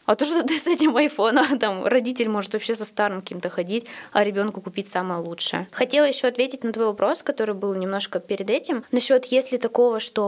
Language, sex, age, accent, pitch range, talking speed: Russian, female, 20-39, native, 205-250 Hz, 205 wpm